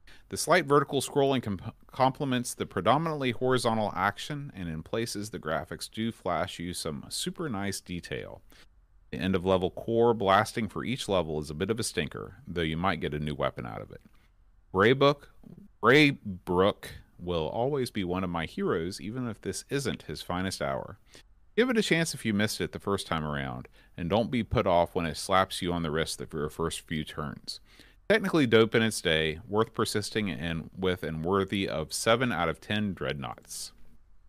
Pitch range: 85-125 Hz